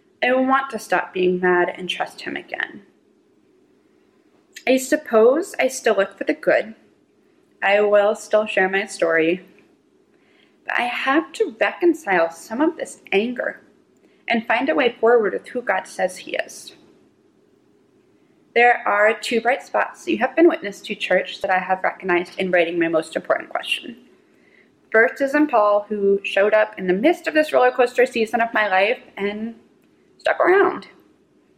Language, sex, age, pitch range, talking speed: English, female, 20-39, 195-330 Hz, 160 wpm